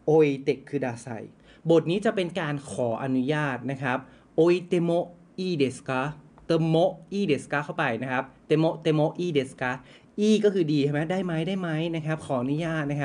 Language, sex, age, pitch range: Japanese, male, 20-39, 140-180 Hz